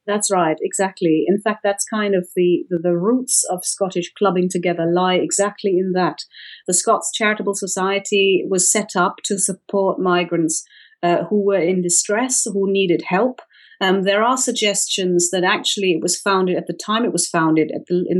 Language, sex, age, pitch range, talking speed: English, female, 40-59, 170-200 Hz, 180 wpm